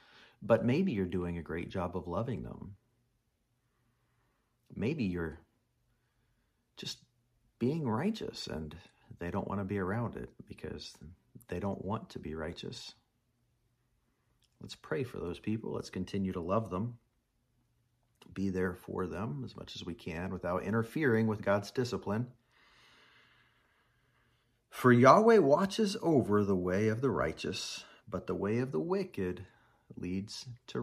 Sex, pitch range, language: male, 95-120 Hz, English